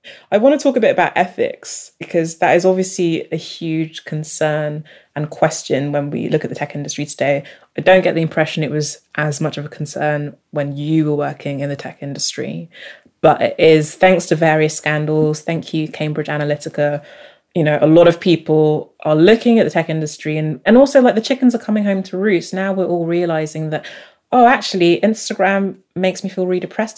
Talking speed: 205 wpm